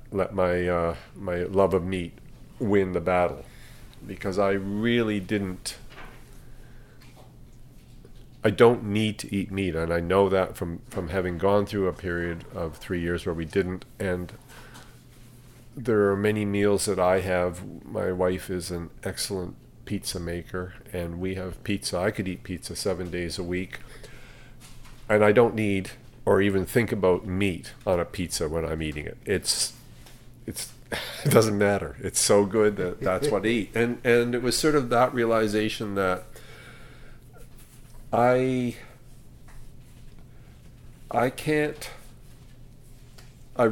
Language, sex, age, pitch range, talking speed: English, male, 40-59, 90-125 Hz, 145 wpm